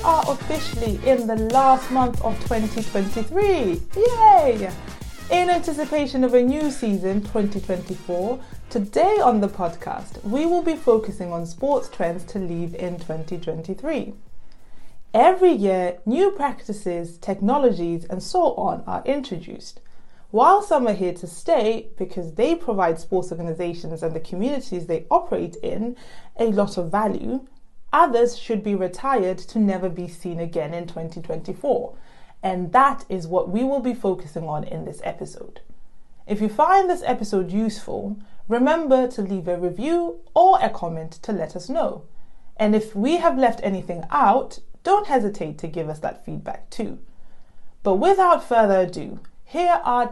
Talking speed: 150 wpm